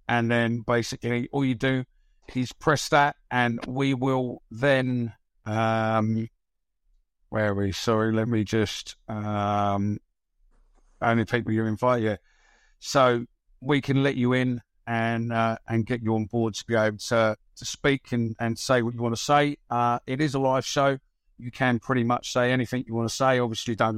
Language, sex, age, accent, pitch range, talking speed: English, male, 50-69, British, 105-125 Hz, 185 wpm